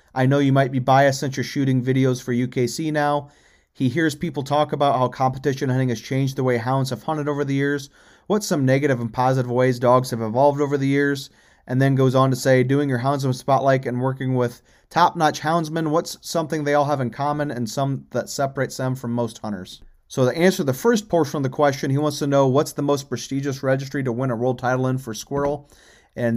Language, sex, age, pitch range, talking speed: English, male, 30-49, 130-150 Hz, 230 wpm